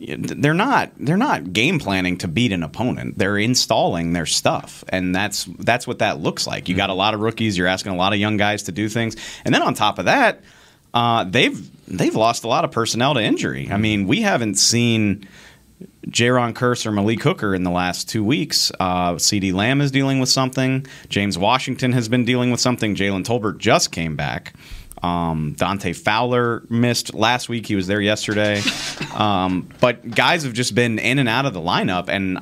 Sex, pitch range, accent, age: male, 95-120 Hz, American, 30-49